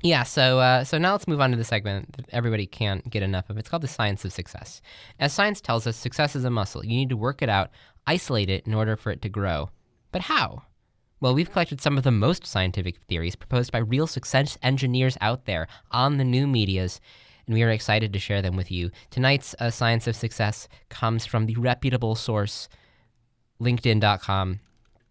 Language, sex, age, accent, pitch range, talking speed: English, male, 10-29, American, 105-130 Hz, 210 wpm